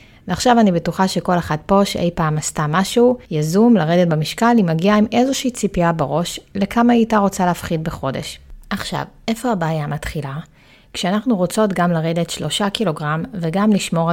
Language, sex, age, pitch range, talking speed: Hebrew, female, 30-49, 160-200 Hz, 155 wpm